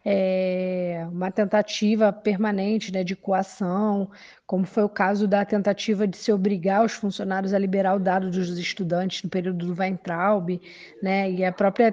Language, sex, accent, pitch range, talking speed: Portuguese, female, Brazilian, 195-250 Hz, 155 wpm